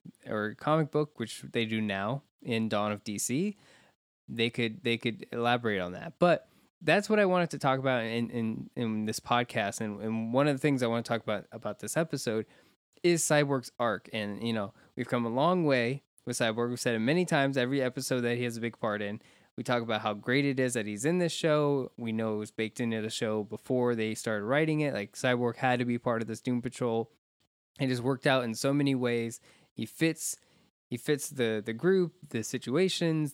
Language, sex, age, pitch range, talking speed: English, male, 20-39, 115-150 Hz, 225 wpm